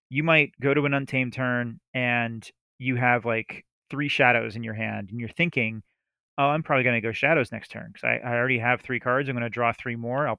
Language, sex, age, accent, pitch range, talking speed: English, male, 30-49, American, 120-135 Hz, 245 wpm